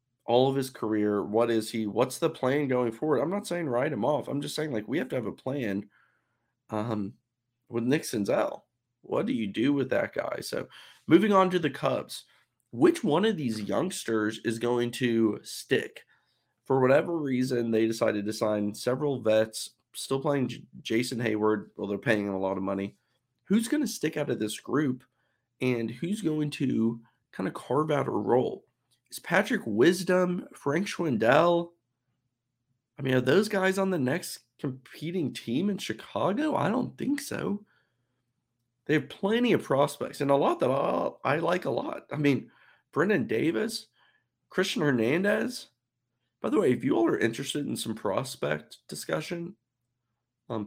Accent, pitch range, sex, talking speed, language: American, 115-155 Hz, male, 175 wpm, English